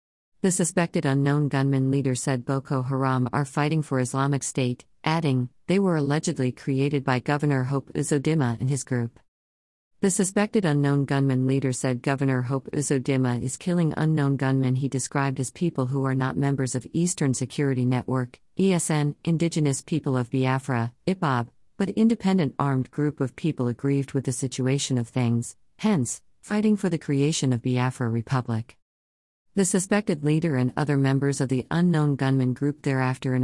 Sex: female